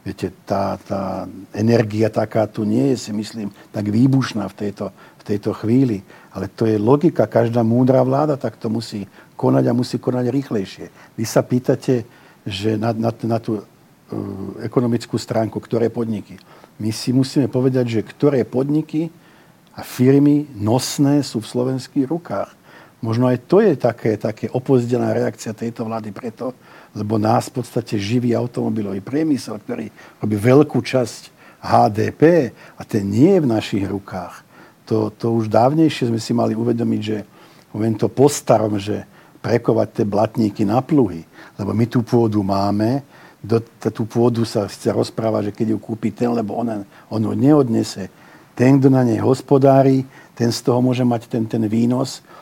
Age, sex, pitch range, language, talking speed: 50-69, male, 110-130 Hz, Slovak, 150 wpm